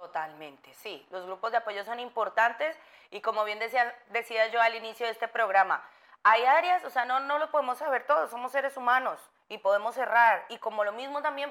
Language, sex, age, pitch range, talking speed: Spanish, female, 30-49, 200-250 Hz, 210 wpm